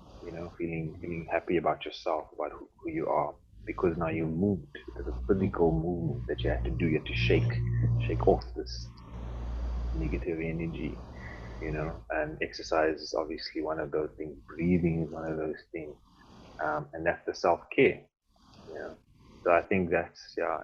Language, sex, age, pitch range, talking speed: English, male, 30-49, 80-95 Hz, 185 wpm